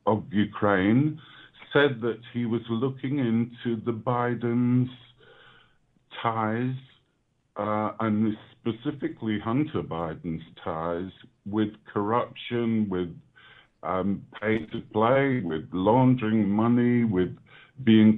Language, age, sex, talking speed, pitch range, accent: English, 50-69, female, 95 wpm, 105-130 Hz, British